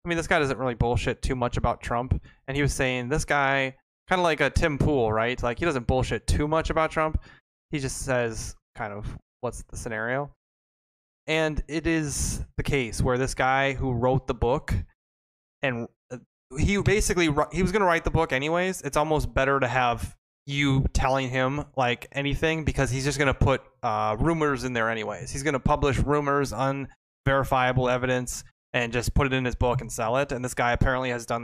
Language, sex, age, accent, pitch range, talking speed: English, male, 20-39, American, 120-150 Hz, 200 wpm